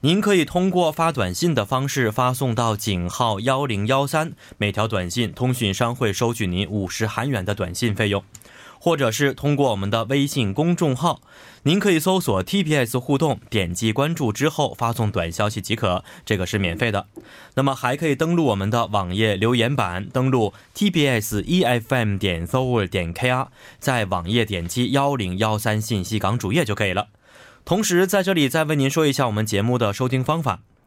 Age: 20-39